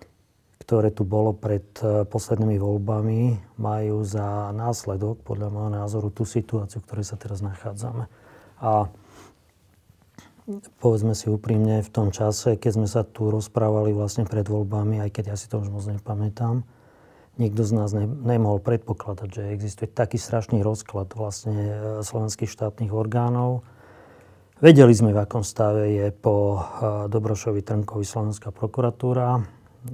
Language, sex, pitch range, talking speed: Slovak, male, 105-115 Hz, 135 wpm